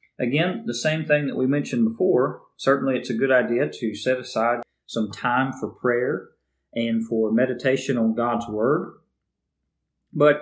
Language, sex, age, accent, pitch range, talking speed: English, male, 40-59, American, 110-145 Hz, 155 wpm